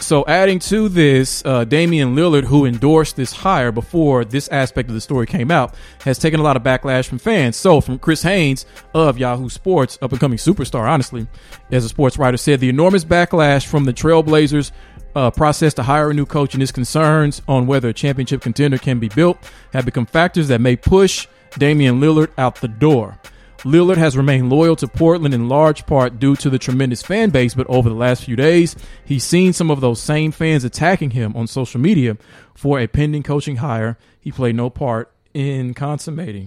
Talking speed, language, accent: 200 wpm, English, American